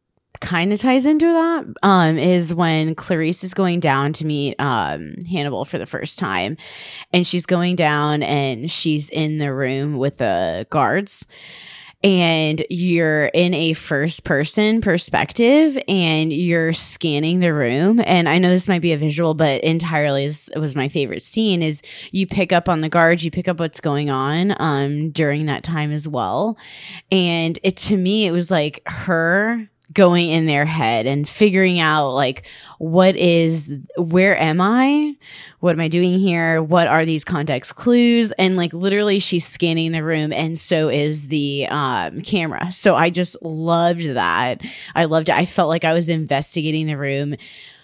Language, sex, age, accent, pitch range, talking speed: English, female, 20-39, American, 150-180 Hz, 170 wpm